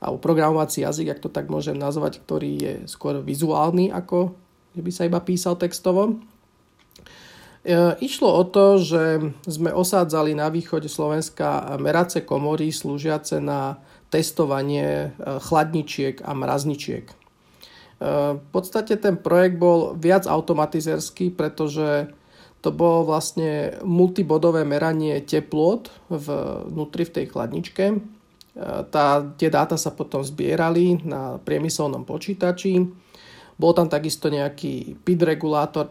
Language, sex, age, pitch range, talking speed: Slovak, male, 40-59, 145-170 Hz, 120 wpm